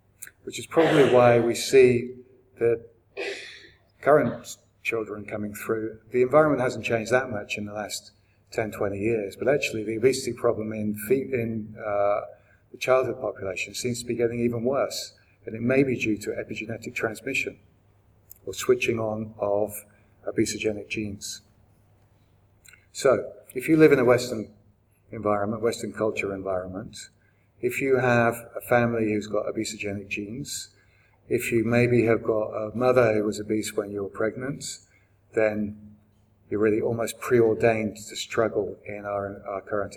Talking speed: 150 wpm